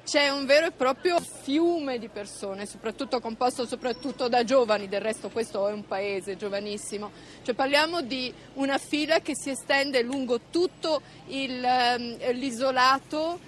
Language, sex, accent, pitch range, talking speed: Italian, female, native, 225-275 Hz, 145 wpm